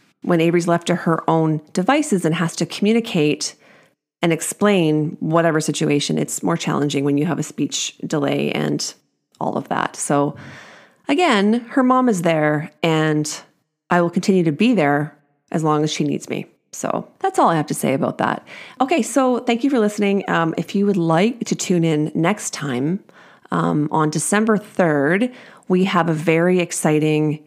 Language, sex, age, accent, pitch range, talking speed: English, female, 30-49, American, 155-195 Hz, 175 wpm